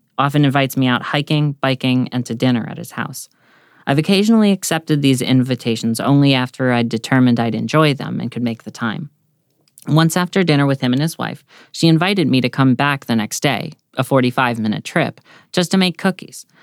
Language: English